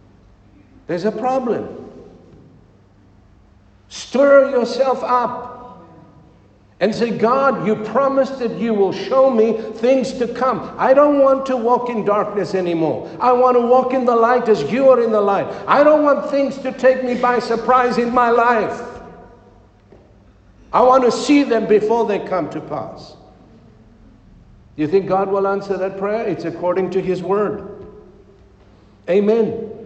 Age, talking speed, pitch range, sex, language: 60-79, 150 wpm, 170-245 Hz, male, English